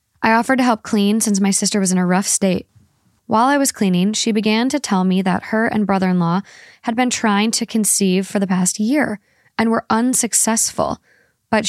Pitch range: 190-225 Hz